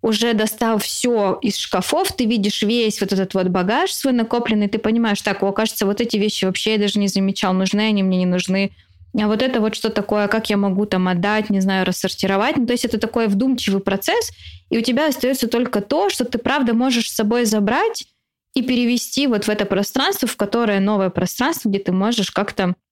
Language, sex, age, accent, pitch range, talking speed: Russian, female, 20-39, native, 190-230 Hz, 210 wpm